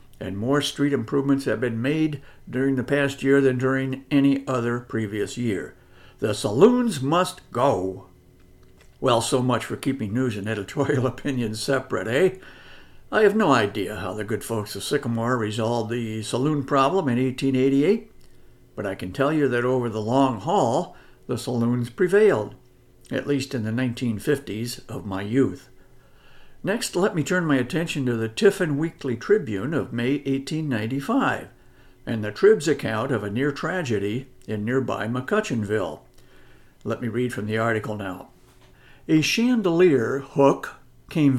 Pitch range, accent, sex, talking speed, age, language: 115-140 Hz, American, male, 150 wpm, 60-79, English